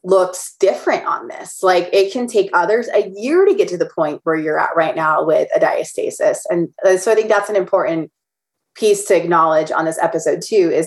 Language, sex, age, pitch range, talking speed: English, female, 20-39, 165-210 Hz, 215 wpm